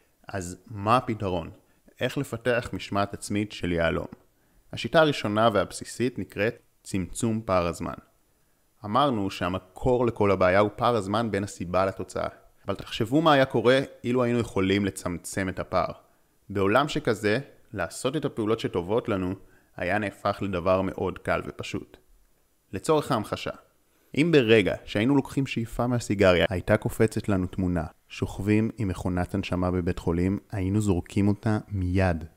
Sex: male